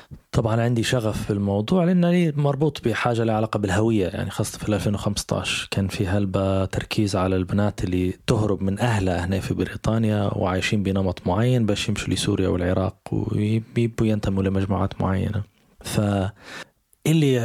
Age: 20-39